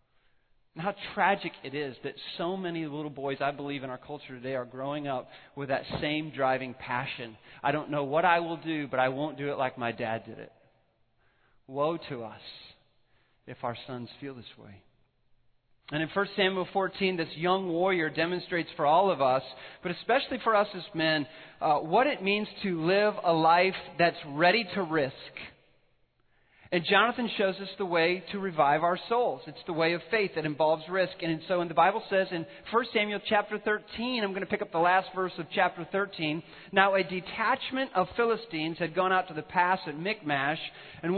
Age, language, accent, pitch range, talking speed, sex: 40-59, English, American, 145-195 Hz, 195 wpm, male